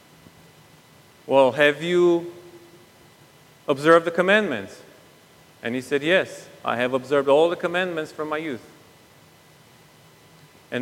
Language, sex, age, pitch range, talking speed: English, male, 40-59, 145-185 Hz, 110 wpm